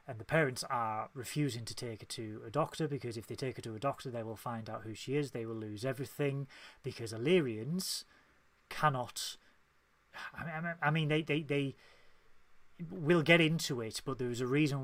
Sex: male